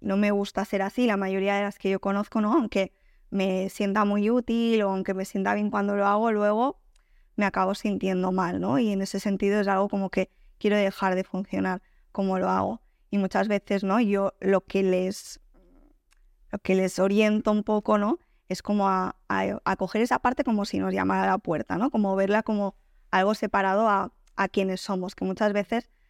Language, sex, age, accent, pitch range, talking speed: Spanish, female, 20-39, Spanish, 190-215 Hz, 205 wpm